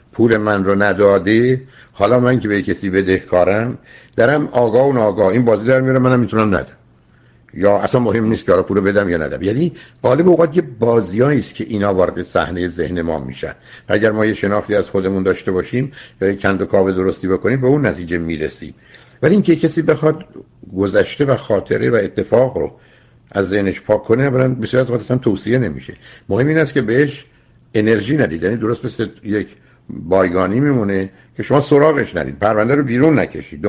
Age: 60-79